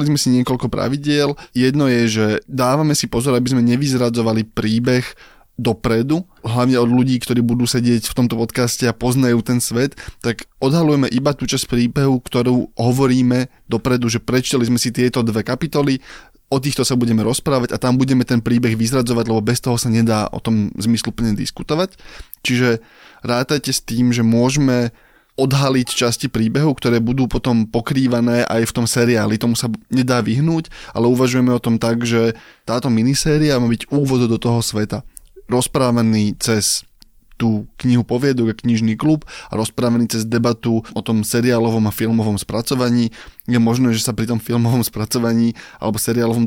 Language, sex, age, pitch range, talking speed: Slovak, male, 20-39, 115-130 Hz, 165 wpm